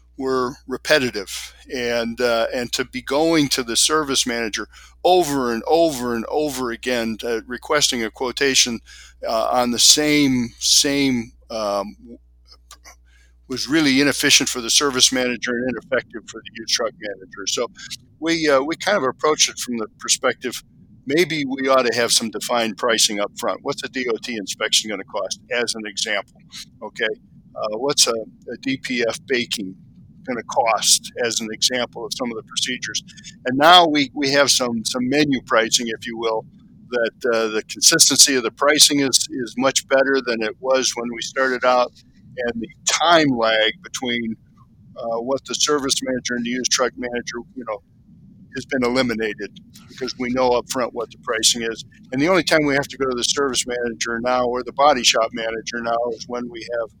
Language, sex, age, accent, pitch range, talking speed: English, male, 50-69, American, 115-140 Hz, 180 wpm